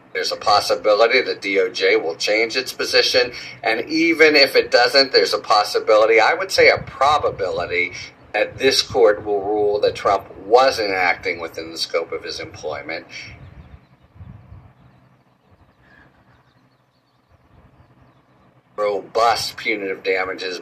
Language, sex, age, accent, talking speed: English, male, 50-69, American, 115 wpm